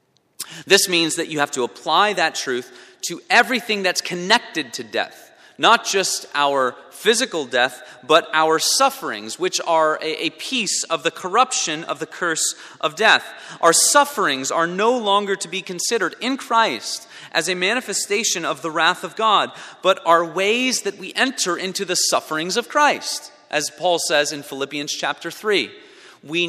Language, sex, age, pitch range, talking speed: English, male, 30-49, 140-195 Hz, 165 wpm